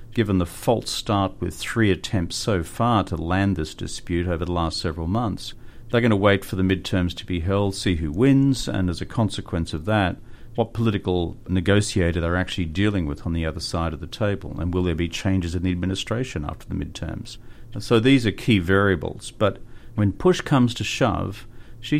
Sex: male